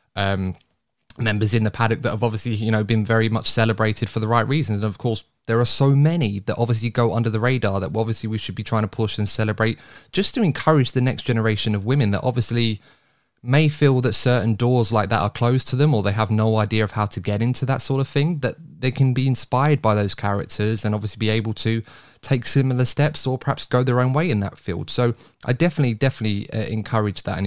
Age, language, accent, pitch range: 20-39, English, British, 105-125 Hz